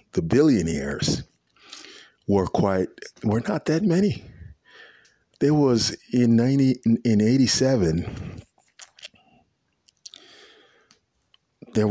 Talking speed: 80 wpm